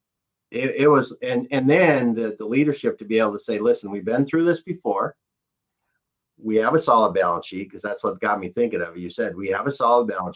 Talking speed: 230 wpm